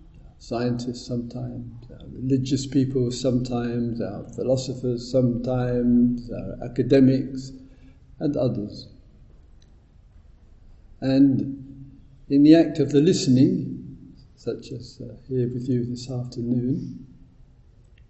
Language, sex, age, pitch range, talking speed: English, male, 50-69, 110-135 Hz, 95 wpm